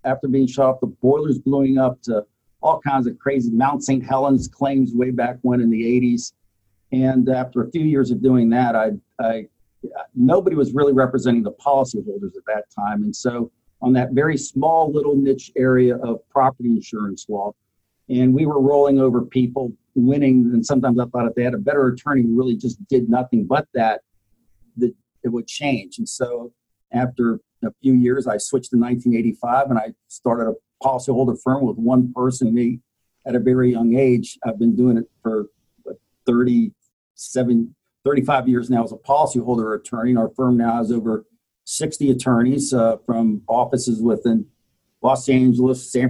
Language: English